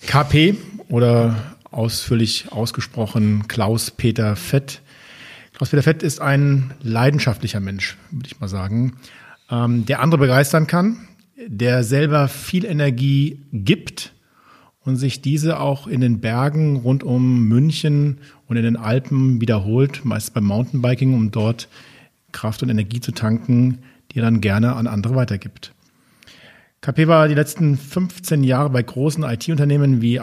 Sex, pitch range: male, 115-140 Hz